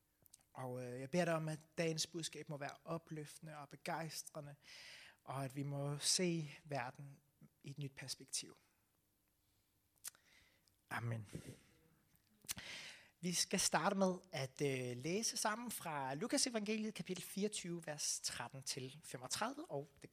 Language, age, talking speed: Danish, 30-49, 115 wpm